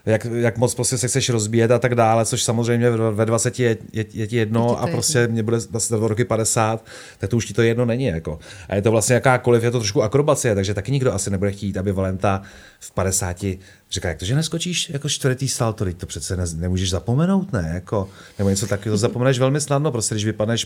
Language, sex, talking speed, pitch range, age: Czech, male, 230 wpm, 105-120 Hz, 30-49